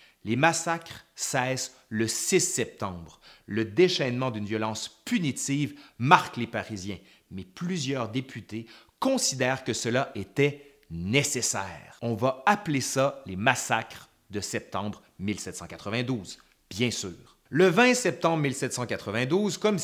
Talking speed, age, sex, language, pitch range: 115 wpm, 30-49, male, French, 110-155 Hz